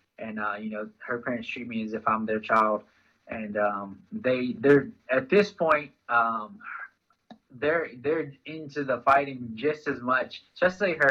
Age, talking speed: 20-39, 175 wpm